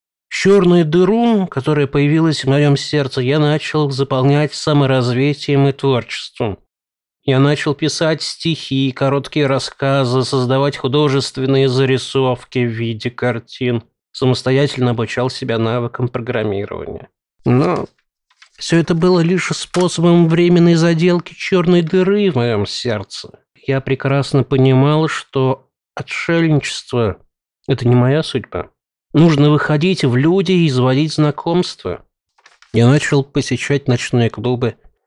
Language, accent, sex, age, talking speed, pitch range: Russian, native, male, 20-39, 110 wpm, 115-145 Hz